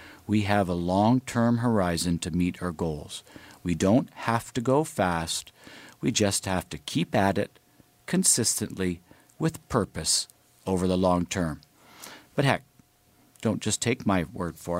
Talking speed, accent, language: 150 wpm, American, English